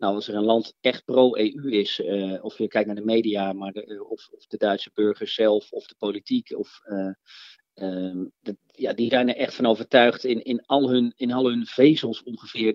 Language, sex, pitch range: Dutch, male, 105-125 Hz